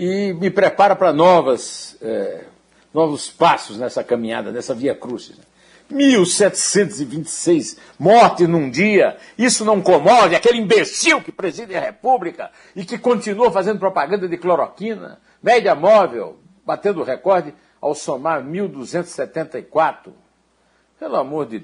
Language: Portuguese